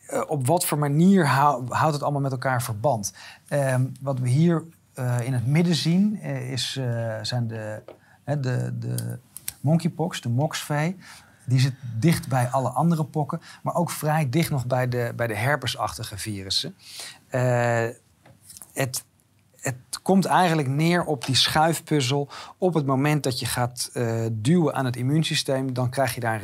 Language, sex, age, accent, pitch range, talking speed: Dutch, male, 40-59, Dutch, 115-145 Hz, 170 wpm